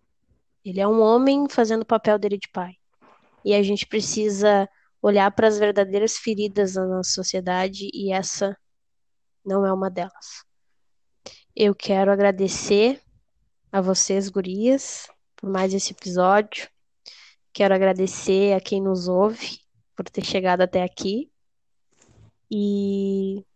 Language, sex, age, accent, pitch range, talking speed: Portuguese, female, 10-29, Brazilian, 190-225 Hz, 125 wpm